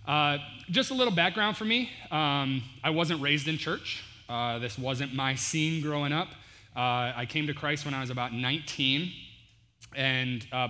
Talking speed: 180 wpm